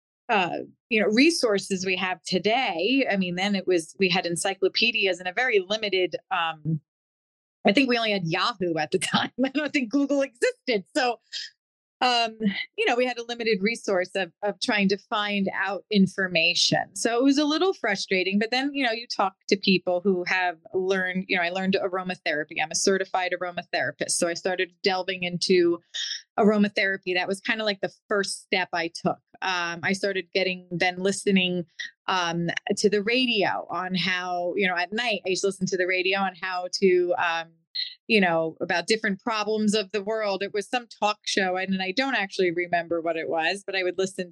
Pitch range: 180-220 Hz